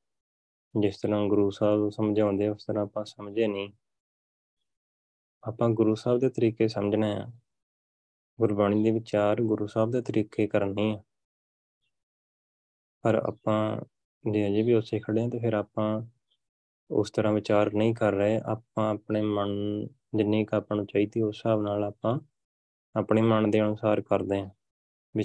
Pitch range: 100-110 Hz